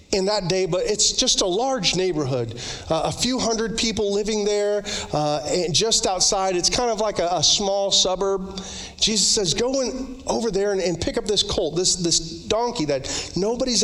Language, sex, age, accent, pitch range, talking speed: English, male, 40-59, American, 140-220 Hz, 195 wpm